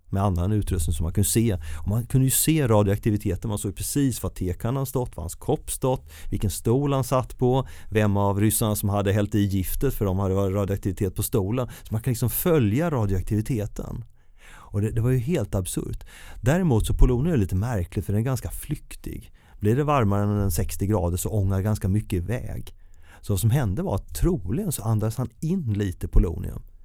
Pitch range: 95-115 Hz